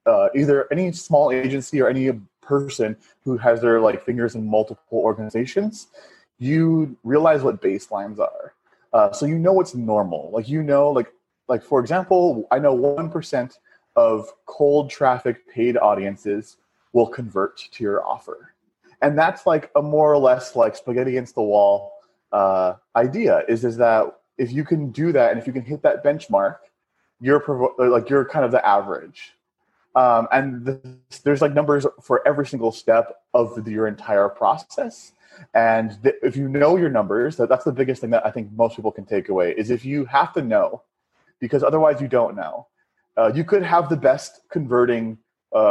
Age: 30-49